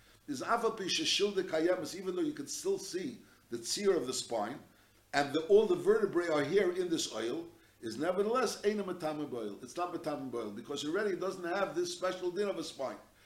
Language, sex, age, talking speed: English, male, 60-79, 170 wpm